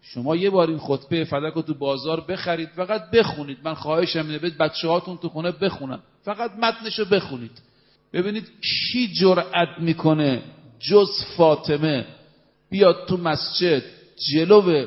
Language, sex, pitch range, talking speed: Persian, male, 135-180 Hz, 135 wpm